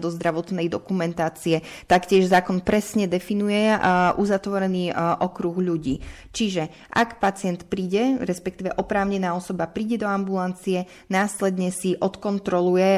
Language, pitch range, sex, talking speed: Slovak, 175-200 Hz, female, 105 wpm